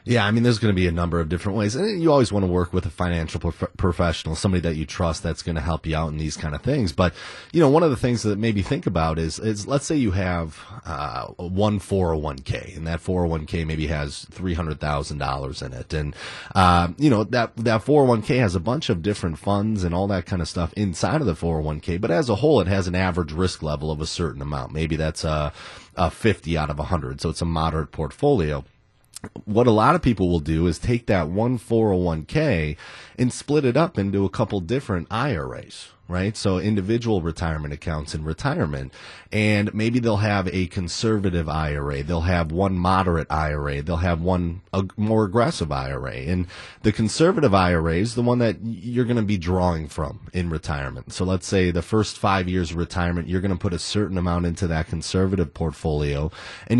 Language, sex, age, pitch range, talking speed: English, male, 30-49, 80-105 Hz, 210 wpm